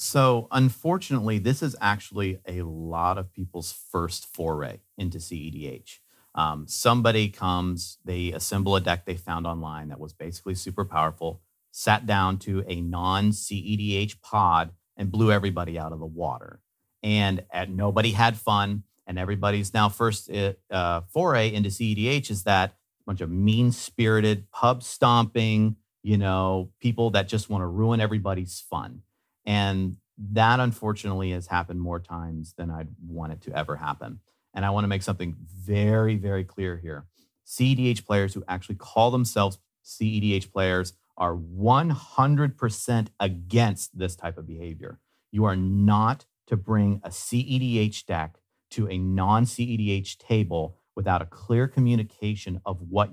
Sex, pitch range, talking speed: male, 90-110 Hz, 145 wpm